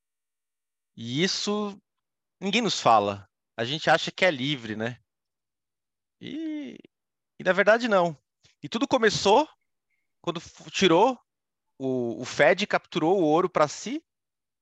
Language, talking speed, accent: Portuguese, 125 wpm, Brazilian